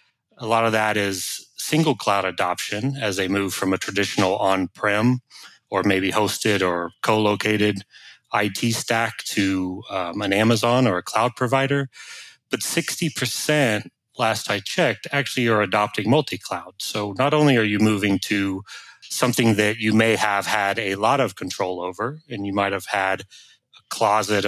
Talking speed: 155 wpm